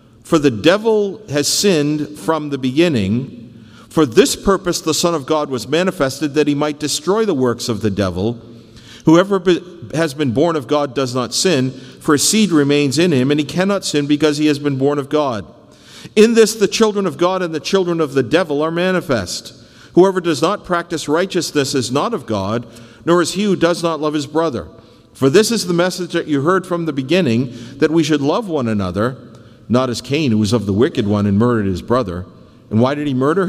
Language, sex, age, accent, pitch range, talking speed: English, male, 50-69, American, 115-165 Hz, 215 wpm